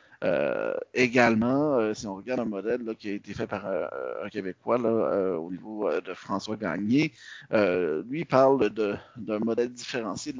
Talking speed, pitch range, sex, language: 195 wpm, 100-120 Hz, male, French